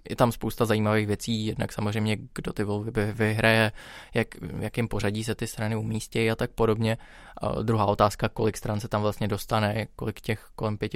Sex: male